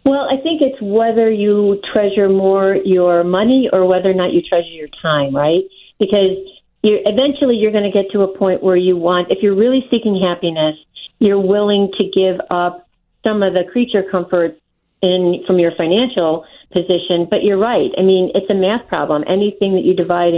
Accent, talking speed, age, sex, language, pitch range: American, 190 wpm, 50-69, female, English, 175-200 Hz